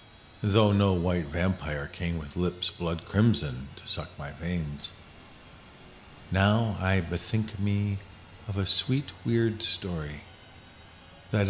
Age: 50-69